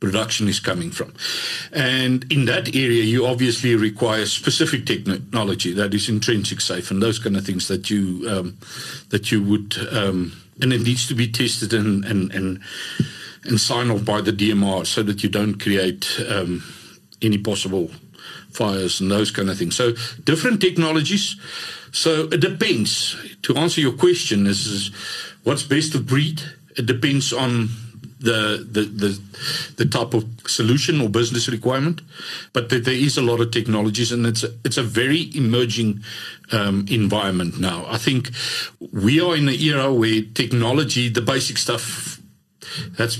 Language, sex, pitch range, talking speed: English, male, 105-130 Hz, 160 wpm